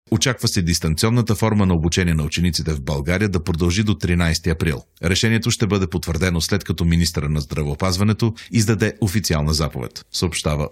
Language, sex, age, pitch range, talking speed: Bulgarian, male, 40-59, 80-105 Hz, 155 wpm